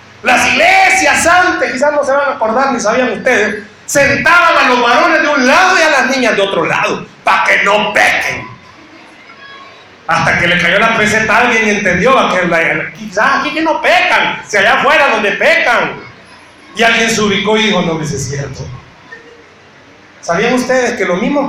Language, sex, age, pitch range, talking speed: Spanish, male, 40-59, 215-320 Hz, 195 wpm